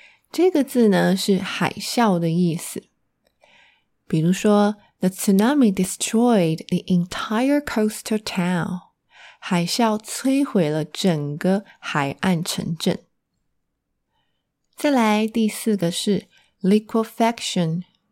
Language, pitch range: Chinese, 175-225 Hz